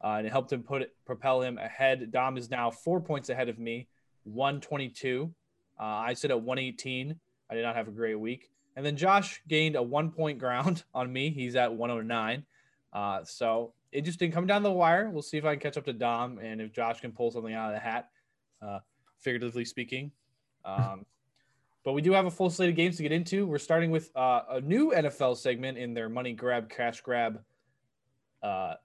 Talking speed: 210 wpm